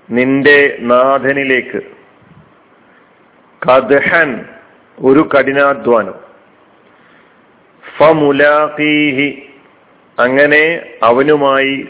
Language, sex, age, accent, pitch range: Malayalam, male, 50-69, native, 130-150 Hz